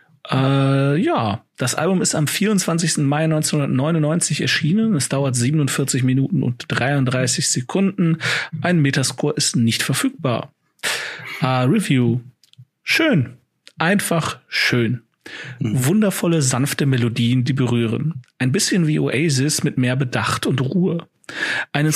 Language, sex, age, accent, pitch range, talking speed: German, male, 40-59, German, 130-165 Hz, 110 wpm